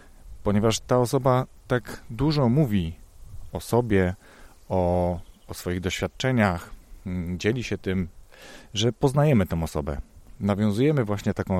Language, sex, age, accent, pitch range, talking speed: Polish, male, 30-49, native, 85-105 Hz, 115 wpm